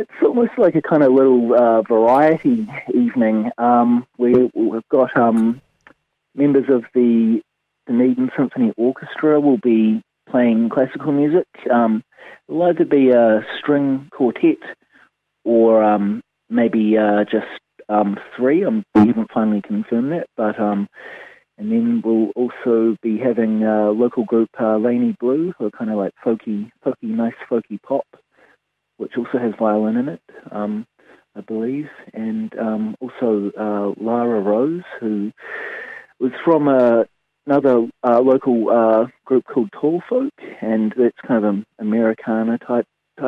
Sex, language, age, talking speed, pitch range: male, English, 30-49, 145 wpm, 110-130 Hz